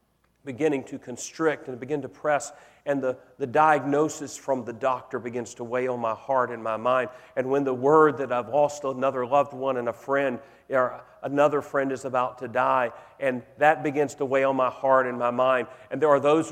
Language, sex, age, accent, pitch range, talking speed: English, male, 40-59, American, 105-140 Hz, 210 wpm